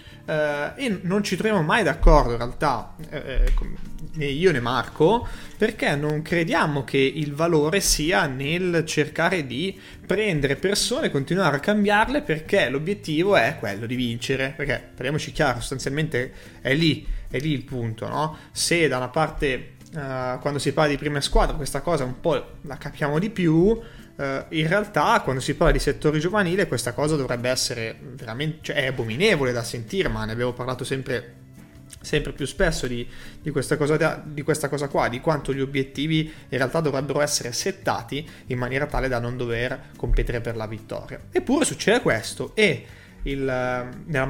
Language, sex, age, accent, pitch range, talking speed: Italian, male, 20-39, native, 125-160 Hz, 170 wpm